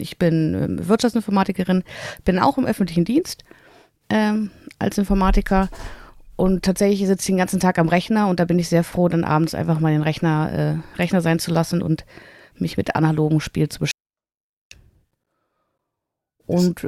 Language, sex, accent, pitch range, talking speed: German, female, German, 170-220 Hz, 165 wpm